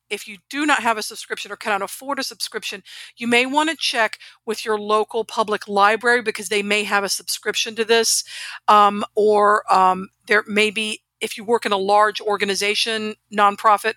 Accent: American